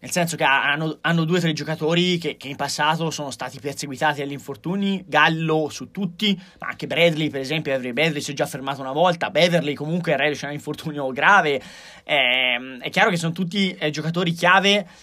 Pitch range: 150-180 Hz